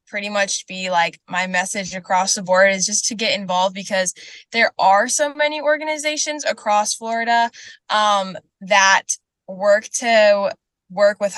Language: English